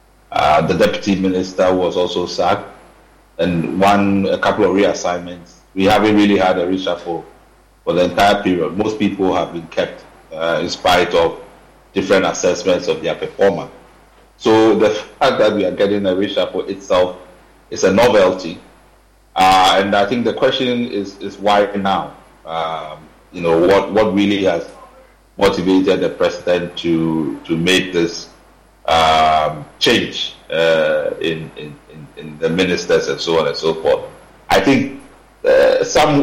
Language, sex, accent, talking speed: English, male, Nigerian, 155 wpm